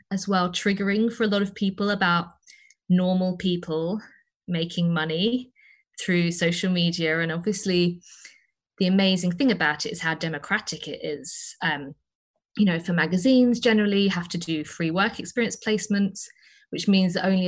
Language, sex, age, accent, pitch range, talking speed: English, female, 20-39, British, 170-215 Hz, 160 wpm